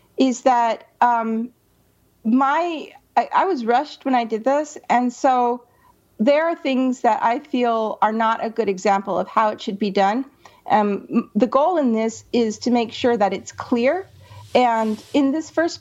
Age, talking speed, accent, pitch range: 40-59, 180 wpm, American, 210-260 Hz